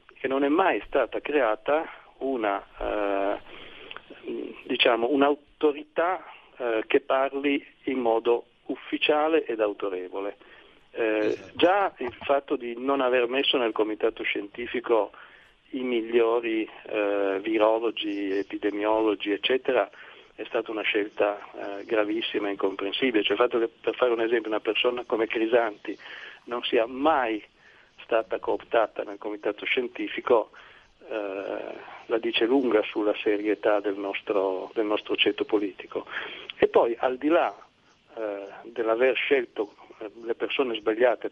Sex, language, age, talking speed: male, Italian, 50-69, 125 wpm